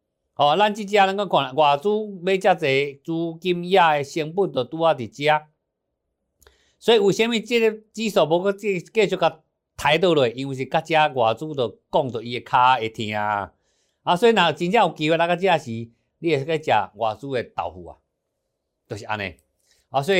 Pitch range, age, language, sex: 120-180 Hz, 50-69, Chinese, male